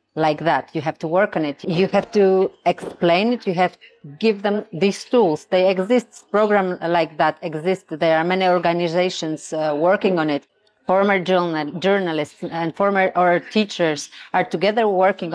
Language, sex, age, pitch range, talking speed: Ukrainian, female, 30-49, 160-190 Hz, 170 wpm